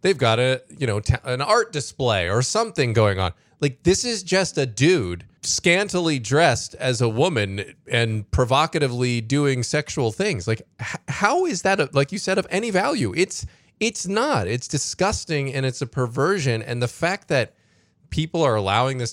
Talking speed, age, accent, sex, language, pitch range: 175 wpm, 20-39, American, male, English, 105-140 Hz